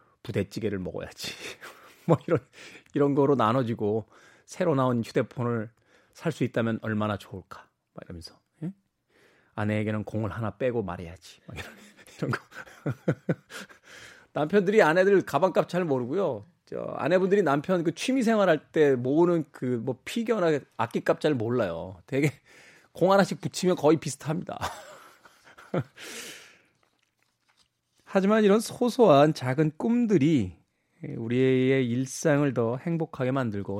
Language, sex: Korean, male